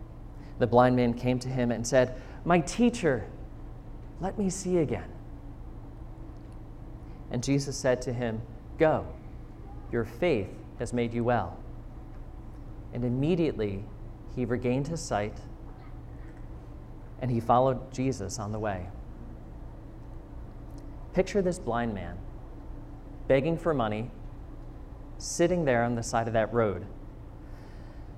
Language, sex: English, male